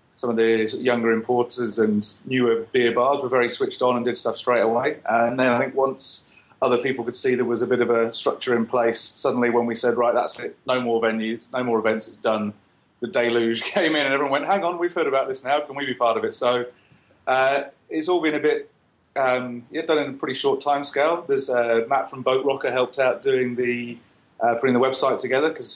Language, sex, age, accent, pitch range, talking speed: English, male, 30-49, British, 115-130 Hz, 240 wpm